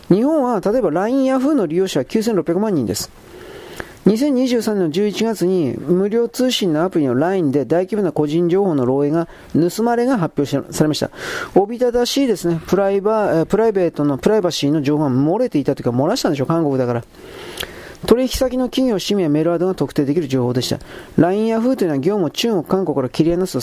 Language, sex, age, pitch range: Japanese, male, 40-59, 155-245 Hz